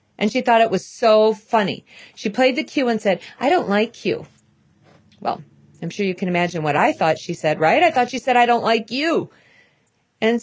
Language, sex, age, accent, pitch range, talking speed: English, female, 40-59, American, 180-250 Hz, 220 wpm